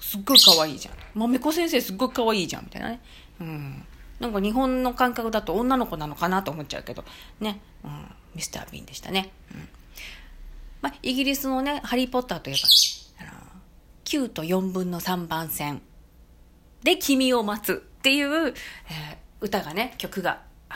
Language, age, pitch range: Japanese, 40-59, 155-230 Hz